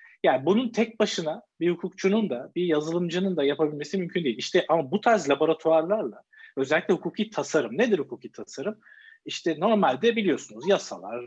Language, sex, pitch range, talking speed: Turkish, male, 155-210 Hz, 150 wpm